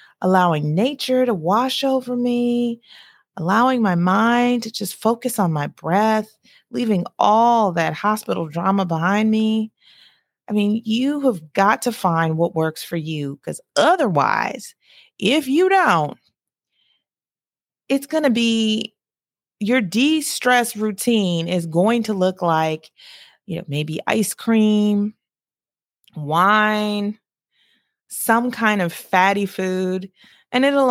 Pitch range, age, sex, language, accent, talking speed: 175-245 Hz, 30-49, female, English, American, 125 wpm